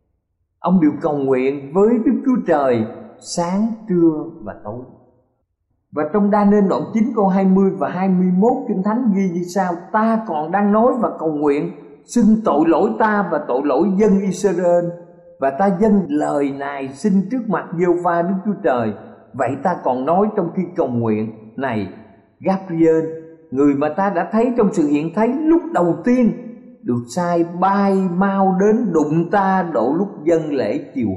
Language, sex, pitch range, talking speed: Vietnamese, male, 135-200 Hz, 170 wpm